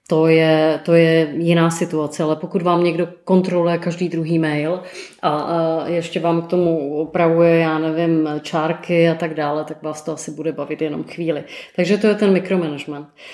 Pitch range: 165-185 Hz